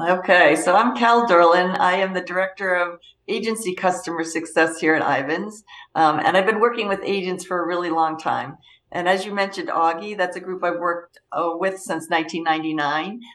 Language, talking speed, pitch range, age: English, 190 wpm, 170-215 Hz, 50-69